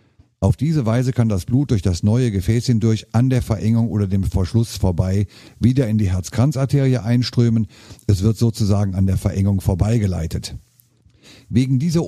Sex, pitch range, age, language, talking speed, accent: male, 100-125 Hz, 50-69, German, 160 wpm, German